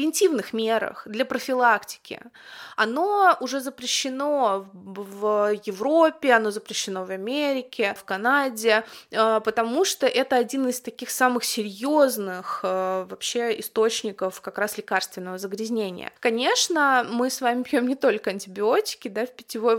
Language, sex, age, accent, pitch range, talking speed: Russian, female, 20-39, native, 210-260 Hz, 115 wpm